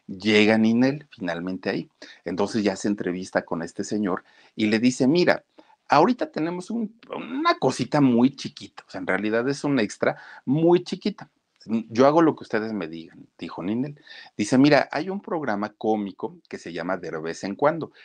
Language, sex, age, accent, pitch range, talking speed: Spanish, male, 50-69, Mexican, 100-150 Hz, 175 wpm